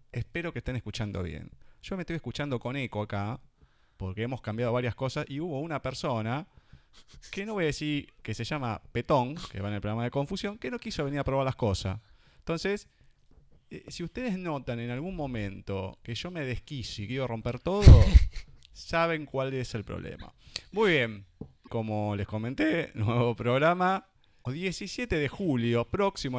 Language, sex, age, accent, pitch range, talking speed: Spanish, male, 20-39, Argentinian, 110-150 Hz, 175 wpm